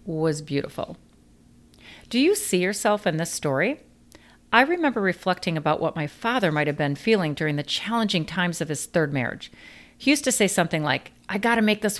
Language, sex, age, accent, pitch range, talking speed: English, female, 40-59, American, 155-215 Hz, 190 wpm